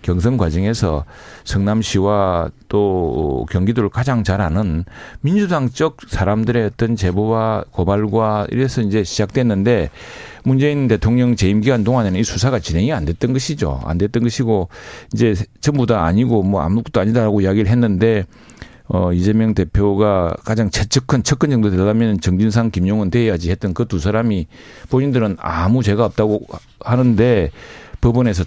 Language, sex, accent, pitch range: Korean, male, native, 95-125 Hz